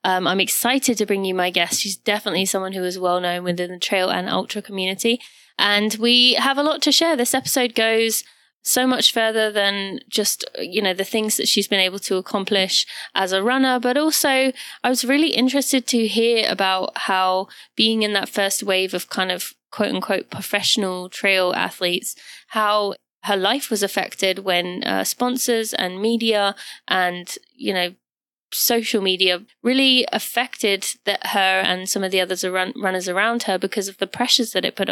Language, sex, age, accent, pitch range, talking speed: English, female, 20-39, British, 190-230 Hz, 180 wpm